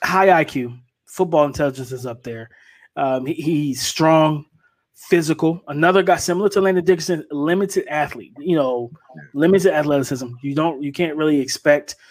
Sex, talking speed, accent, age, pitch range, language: male, 150 wpm, American, 20-39, 145-170 Hz, English